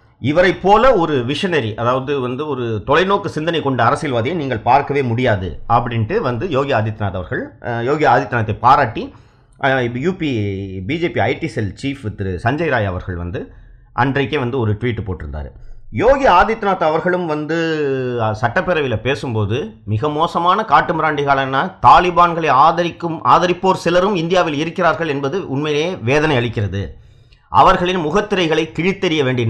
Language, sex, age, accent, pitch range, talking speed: Tamil, male, 30-49, native, 115-165 Hz, 120 wpm